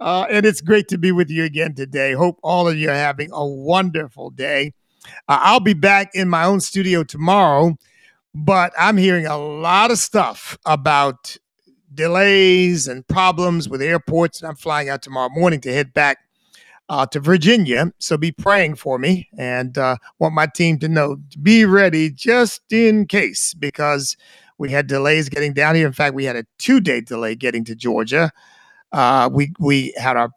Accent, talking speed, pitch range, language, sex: American, 185 wpm, 130-175 Hz, English, male